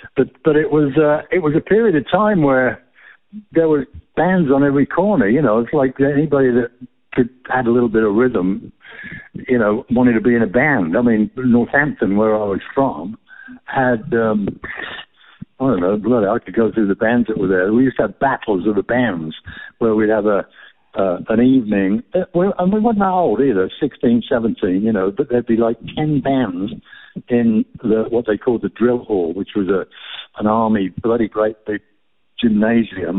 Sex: male